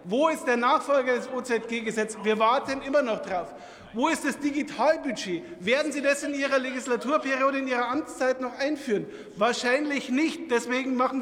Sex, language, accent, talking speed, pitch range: male, German, German, 160 wpm, 225-270 Hz